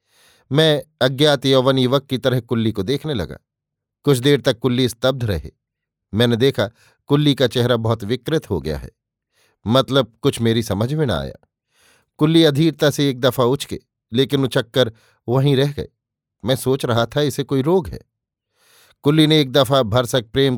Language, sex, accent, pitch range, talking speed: Hindi, male, native, 120-150 Hz, 170 wpm